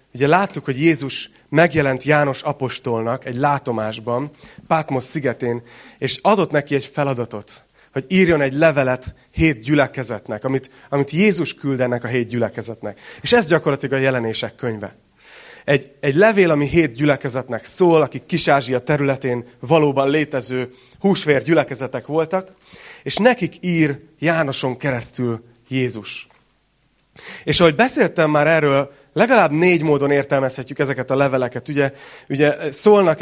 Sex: male